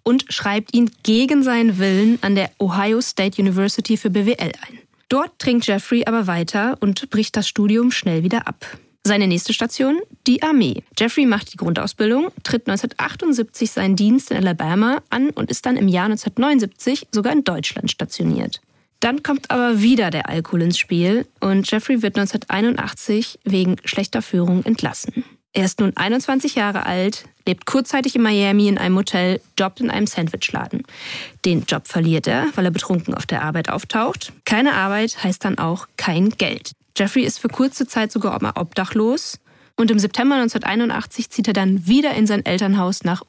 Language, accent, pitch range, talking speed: German, German, 195-240 Hz, 170 wpm